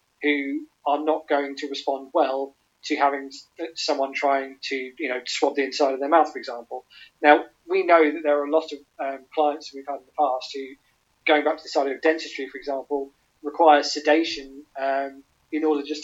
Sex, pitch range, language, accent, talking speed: male, 135-155 Hz, English, British, 200 wpm